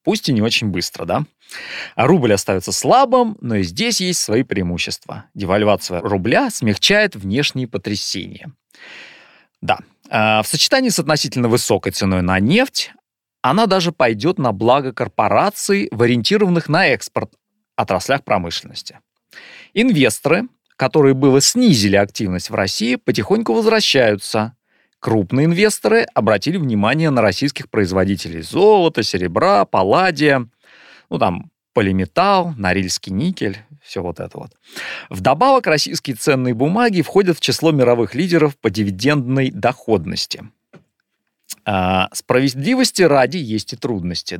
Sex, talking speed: male, 120 wpm